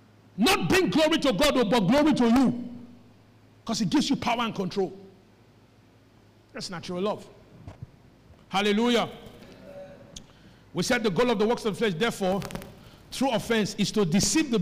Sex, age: male, 50-69